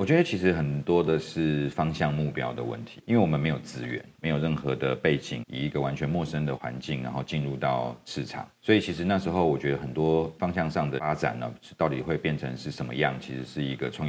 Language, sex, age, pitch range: Chinese, male, 40-59, 70-90 Hz